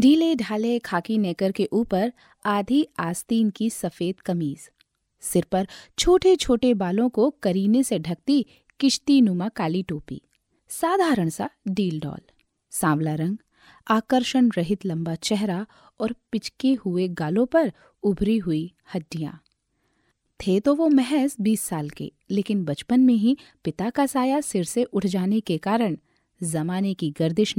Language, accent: Hindi, native